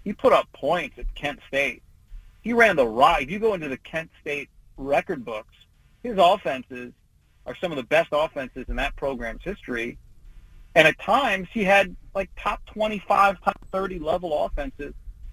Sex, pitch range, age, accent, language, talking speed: male, 115-165 Hz, 40-59, American, English, 170 wpm